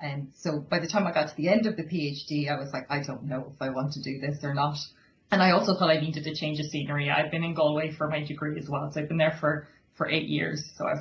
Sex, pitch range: female, 150-165 Hz